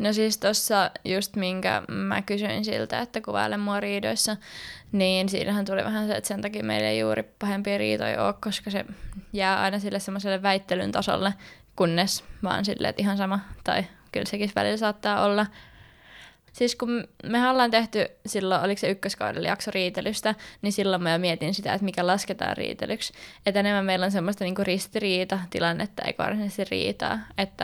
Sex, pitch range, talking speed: female, 180-205 Hz, 165 wpm